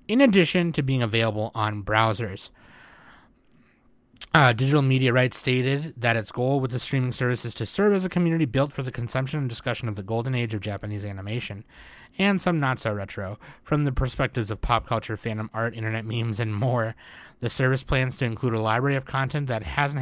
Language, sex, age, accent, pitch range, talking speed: English, male, 20-39, American, 110-135 Hz, 190 wpm